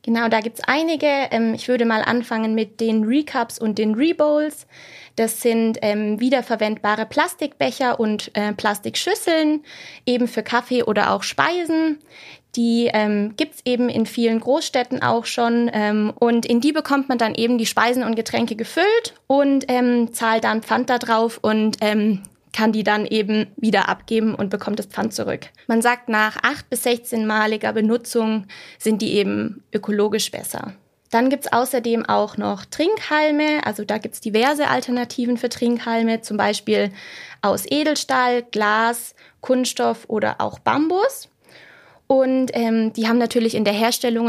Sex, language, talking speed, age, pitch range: female, German, 160 wpm, 20-39, 220-255 Hz